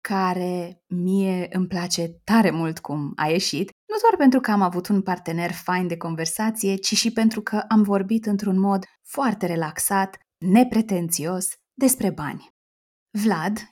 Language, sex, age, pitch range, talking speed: Romanian, female, 20-39, 180-235 Hz, 150 wpm